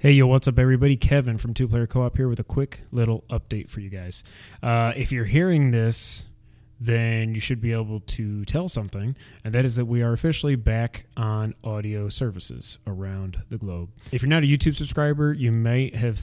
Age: 20-39